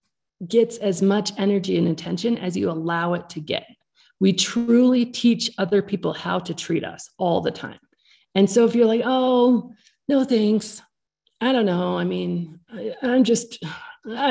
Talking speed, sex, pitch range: 165 wpm, female, 180-230 Hz